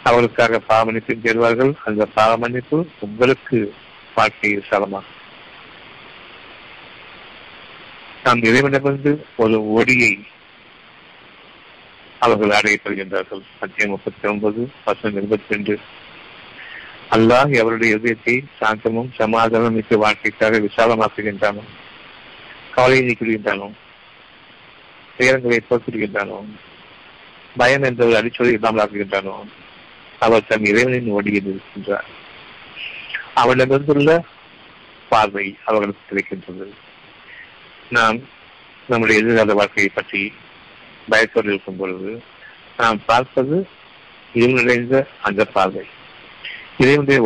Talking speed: 70 wpm